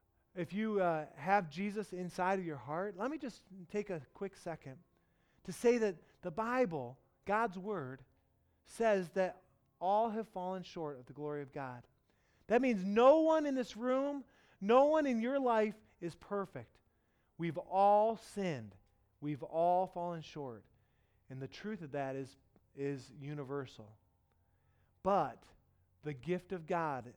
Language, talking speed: English, 150 wpm